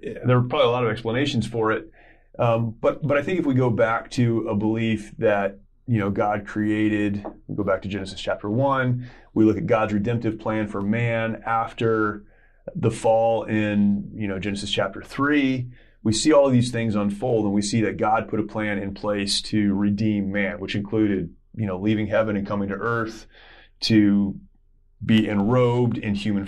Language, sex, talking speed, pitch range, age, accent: English, male, 195 wpm, 100-115 Hz, 30-49, American